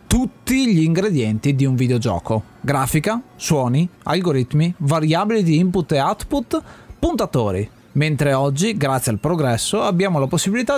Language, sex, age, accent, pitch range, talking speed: Italian, male, 30-49, native, 135-200 Hz, 130 wpm